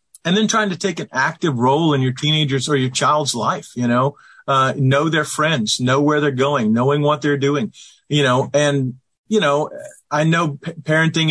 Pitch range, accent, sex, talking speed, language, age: 125-160 Hz, American, male, 200 wpm, English, 40-59